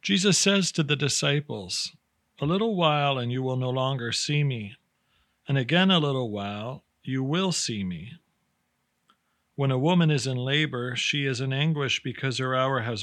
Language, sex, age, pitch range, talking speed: English, male, 40-59, 120-155 Hz, 175 wpm